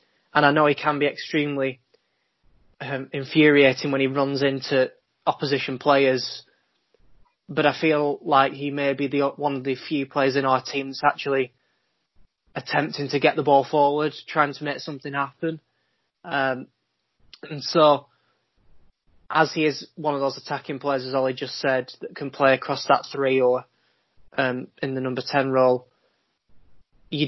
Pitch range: 135-145 Hz